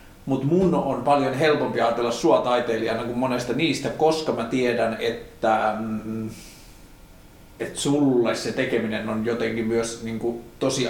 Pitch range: 115-140 Hz